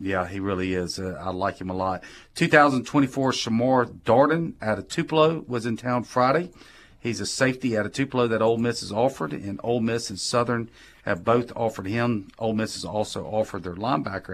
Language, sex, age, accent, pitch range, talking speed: English, male, 40-59, American, 105-130 Hz, 195 wpm